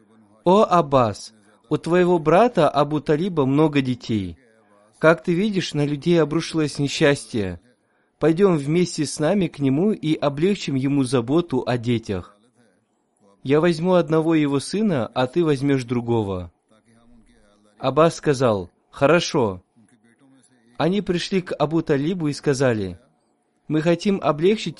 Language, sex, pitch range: Russian, male, 120-155 Hz